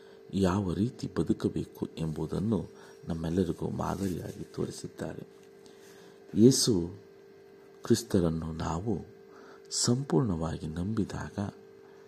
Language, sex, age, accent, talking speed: Kannada, male, 50-69, native, 60 wpm